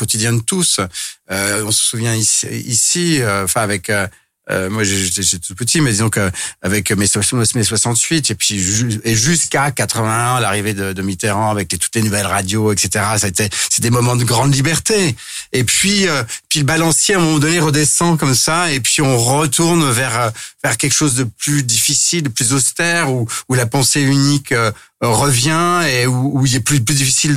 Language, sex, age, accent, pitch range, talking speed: French, male, 40-59, French, 115-145 Hz, 195 wpm